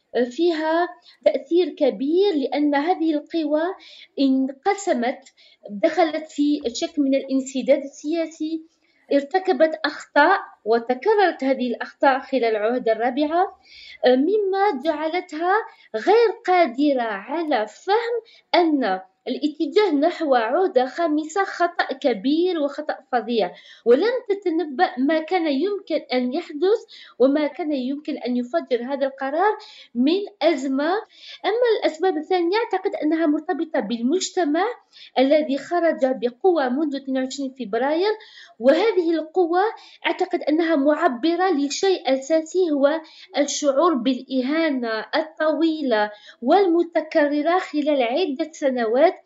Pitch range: 270-355 Hz